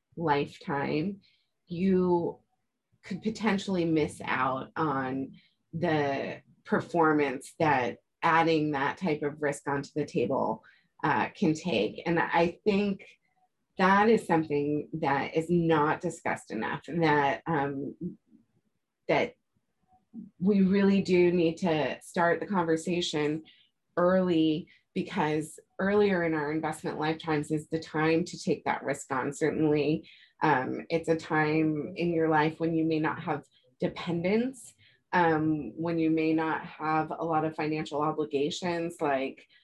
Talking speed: 125 wpm